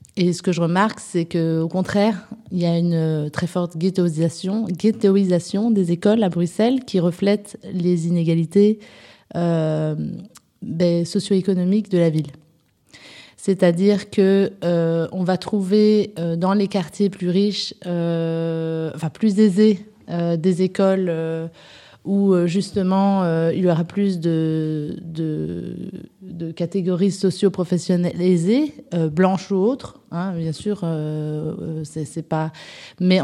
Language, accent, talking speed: French, French, 135 wpm